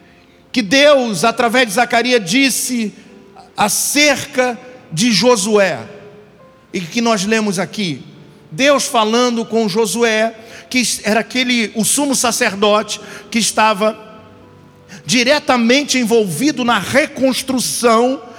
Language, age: Portuguese, 50-69